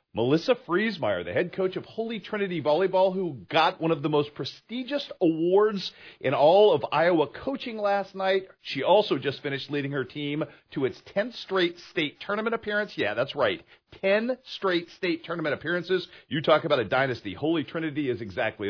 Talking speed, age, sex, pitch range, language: 175 wpm, 40-59, male, 145-190 Hz, English